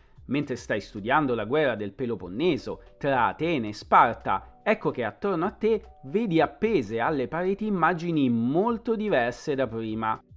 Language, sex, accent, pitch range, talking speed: Italian, male, native, 125-180 Hz, 145 wpm